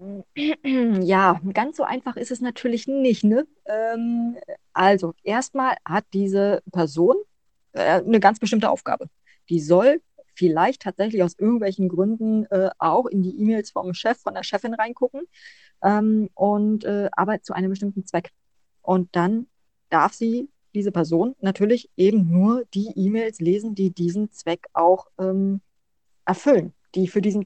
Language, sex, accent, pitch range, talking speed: German, female, German, 180-225 Hz, 145 wpm